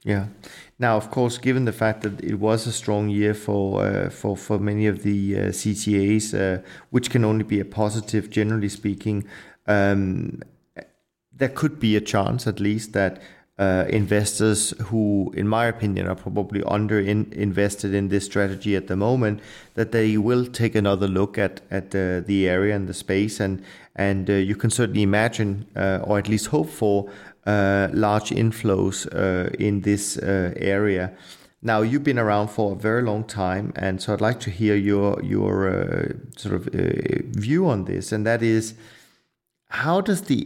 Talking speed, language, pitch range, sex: 180 wpm, English, 100-115 Hz, male